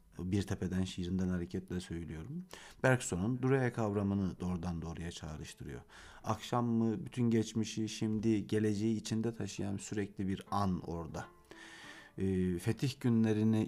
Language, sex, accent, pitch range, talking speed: Turkish, male, native, 95-115 Hz, 115 wpm